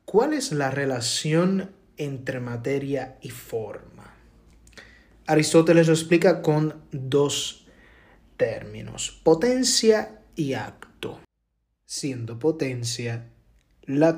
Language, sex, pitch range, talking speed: Spanish, male, 115-160 Hz, 85 wpm